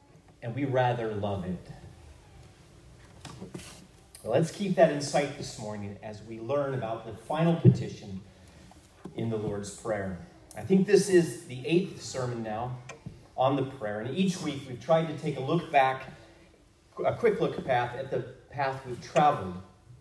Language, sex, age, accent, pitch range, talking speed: English, male, 30-49, American, 110-155 Hz, 160 wpm